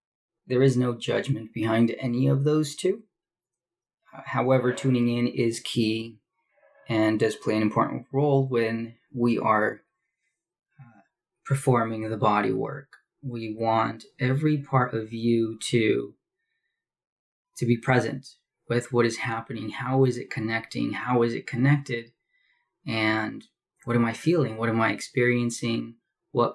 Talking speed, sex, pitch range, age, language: 135 wpm, male, 115-135 Hz, 20-39, English